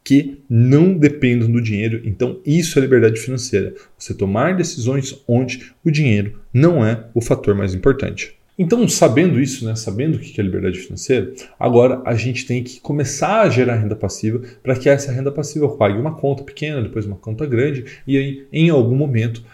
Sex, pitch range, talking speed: male, 110-140 Hz, 185 wpm